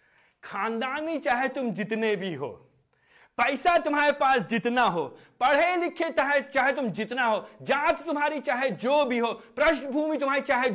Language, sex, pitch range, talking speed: Hindi, male, 165-265 Hz, 150 wpm